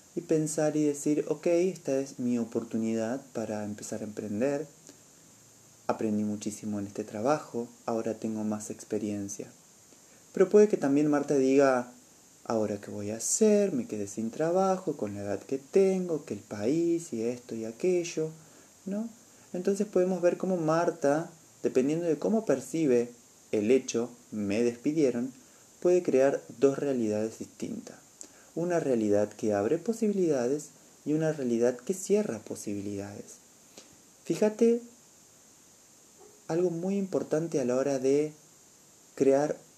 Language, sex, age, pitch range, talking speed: Spanish, male, 30-49, 115-170 Hz, 135 wpm